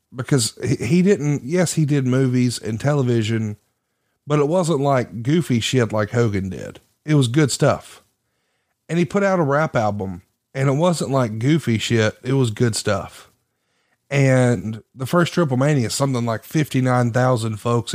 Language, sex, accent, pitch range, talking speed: English, male, American, 115-145 Hz, 165 wpm